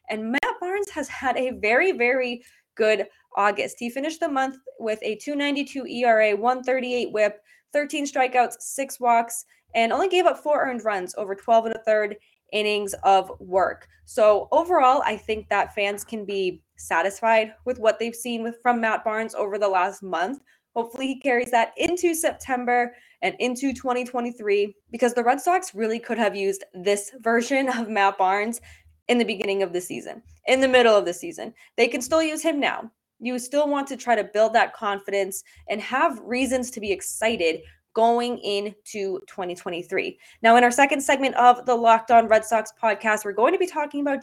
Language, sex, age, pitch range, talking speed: English, female, 20-39, 205-255 Hz, 185 wpm